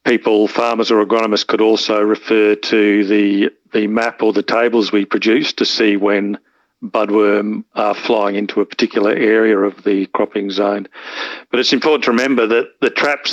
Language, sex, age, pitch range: English, male, 50-69, 100-110 Hz